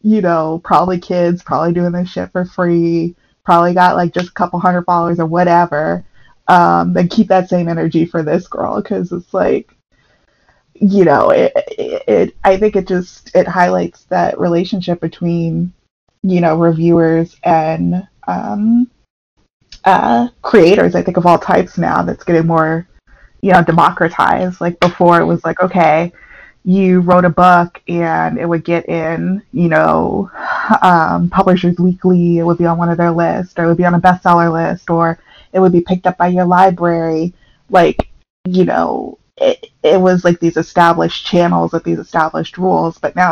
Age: 20-39